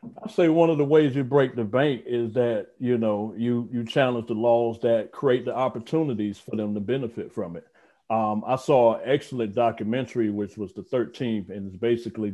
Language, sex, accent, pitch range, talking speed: English, male, American, 105-125 Hz, 205 wpm